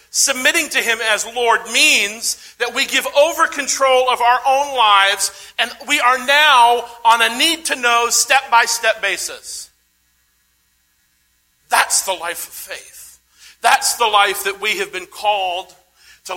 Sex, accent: male, American